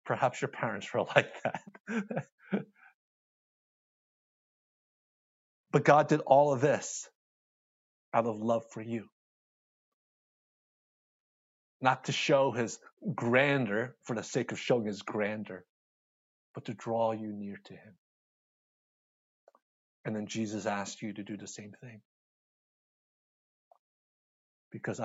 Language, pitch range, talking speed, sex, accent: English, 110-140 Hz, 115 wpm, male, American